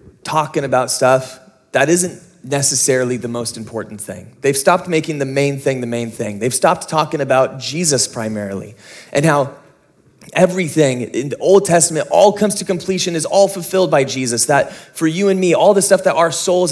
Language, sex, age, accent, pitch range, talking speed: English, male, 20-39, American, 145-190 Hz, 185 wpm